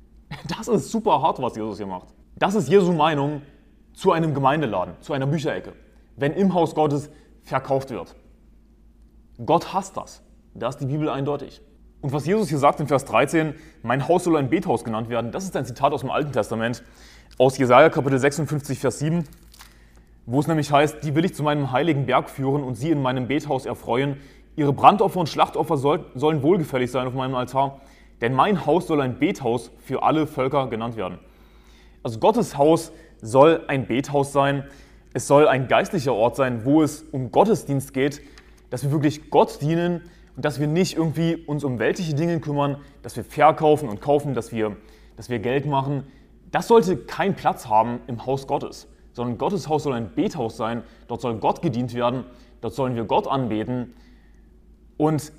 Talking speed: 185 wpm